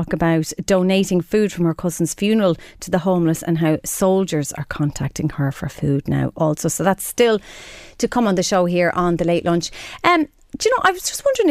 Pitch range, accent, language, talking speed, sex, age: 155-205 Hz, Irish, English, 215 wpm, female, 30-49